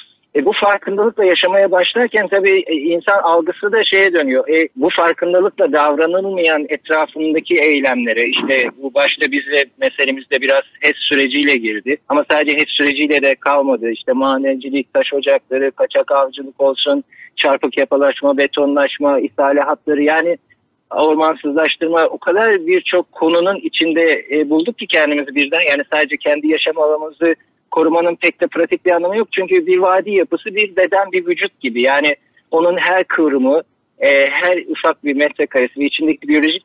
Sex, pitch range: male, 135-190 Hz